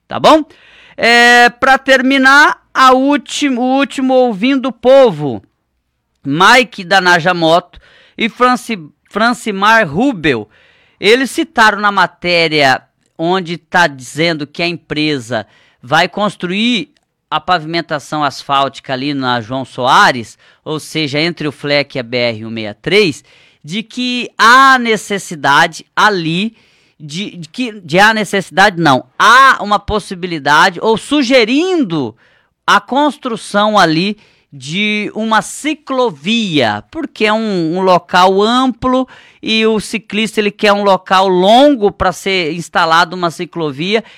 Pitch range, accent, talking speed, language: 165-225 Hz, Brazilian, 110 wpm, Portuguese